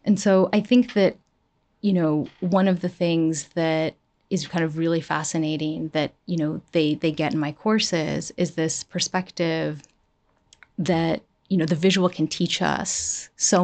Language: English